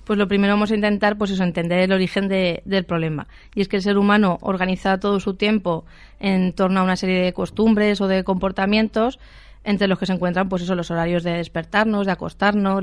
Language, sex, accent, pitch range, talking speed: Spanish, female, Spanish, 185-200 Hz, 220 wpm